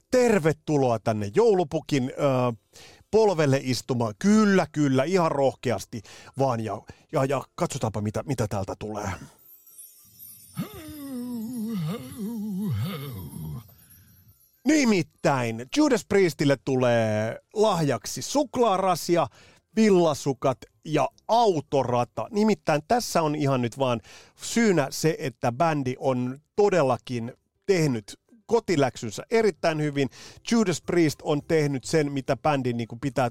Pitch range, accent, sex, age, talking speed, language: 120-190 Hz, native, male, 30-49, 90 wpm, Finnish